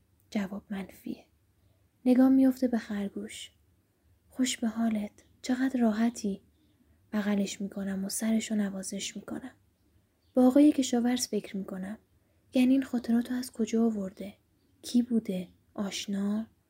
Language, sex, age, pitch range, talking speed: Persian, female, 10-29, 195-245 Hz, 110 wpm